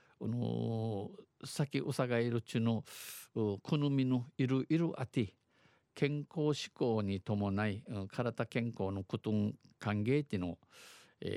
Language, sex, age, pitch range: Japanese, male, 50-69, 105-130 Hz